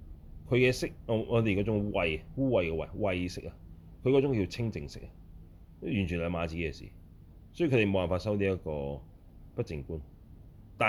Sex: male